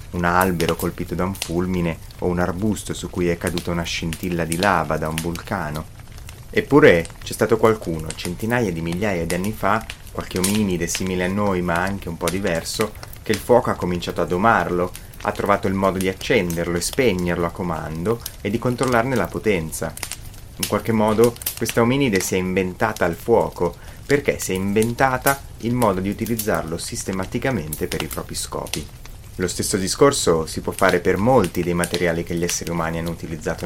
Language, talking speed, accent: Italian, 180 wpm, native